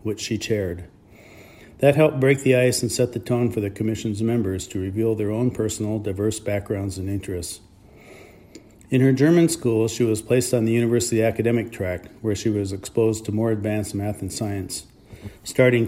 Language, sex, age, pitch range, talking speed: English, male, 50-69, 100-120 Hz, 180 wpm